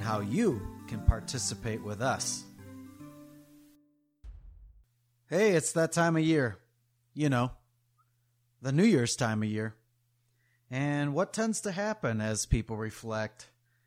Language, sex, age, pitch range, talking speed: English, male, 30-49, 110-135 Hz, 120 wpm